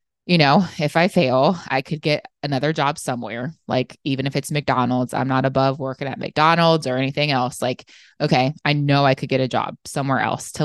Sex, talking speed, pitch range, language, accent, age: female, 210 wpm, 130-160 Hz, English, American, 20-39